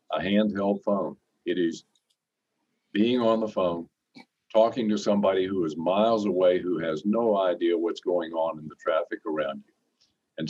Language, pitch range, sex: English, 90-110 Hz, male